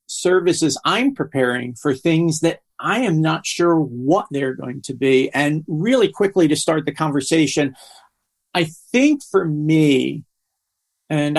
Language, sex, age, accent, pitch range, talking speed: English, male, 50-69, American, 135-170 Hz, 140 wpm